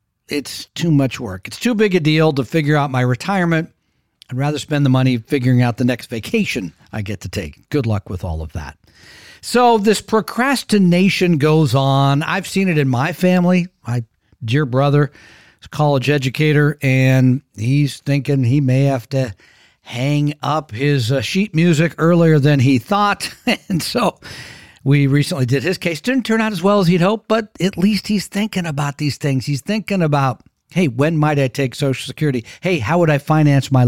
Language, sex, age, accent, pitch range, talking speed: English, male, 50-69, American, 130-170 Hz, 190 wpm